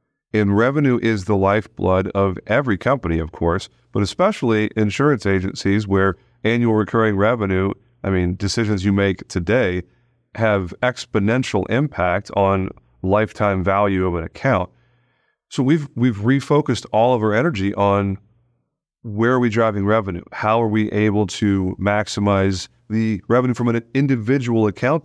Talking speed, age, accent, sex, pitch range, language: 140 wpm, 40-59, American, male, 95-120 Hz, English